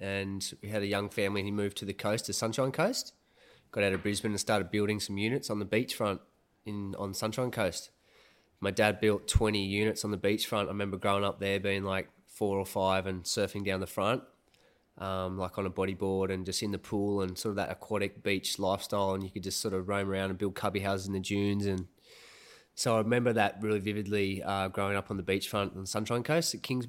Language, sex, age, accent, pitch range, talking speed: English, male, 20-39, Australian, 95-105 Hz, 230 wpm